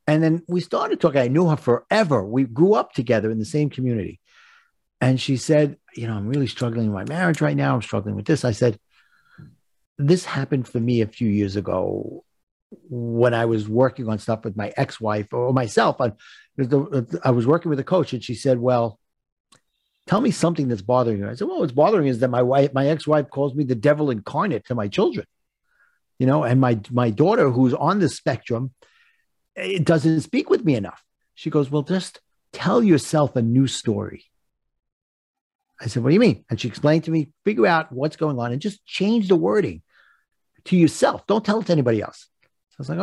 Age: 50-69